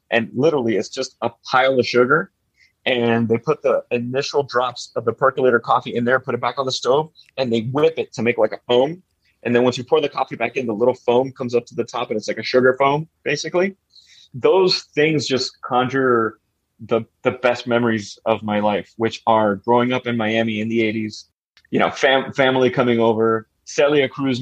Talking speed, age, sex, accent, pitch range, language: 215 wpm, 30-49, male, American, 110-130 Hz, English